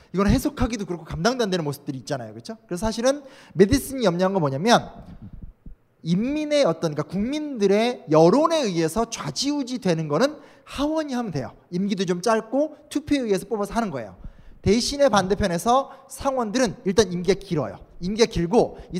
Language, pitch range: Korean, 180-260 Hz